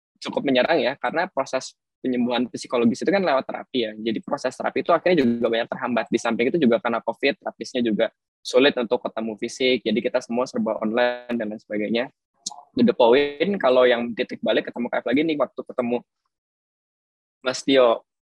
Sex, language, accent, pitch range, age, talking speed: male, Indonesian, native, 120-145 Hz, 20-39, 180 wpm